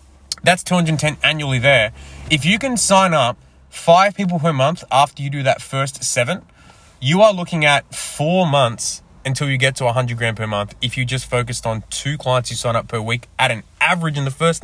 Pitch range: 115-150 Hz